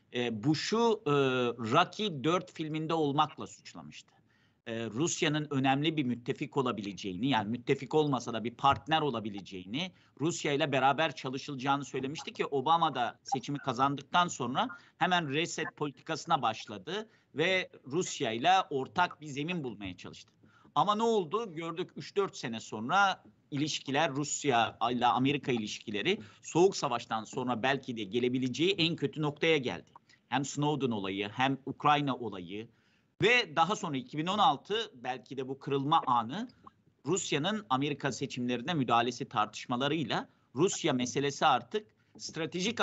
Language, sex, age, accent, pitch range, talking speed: Turkish, male, 50-69, native, 125-160 Hz, 120 wpm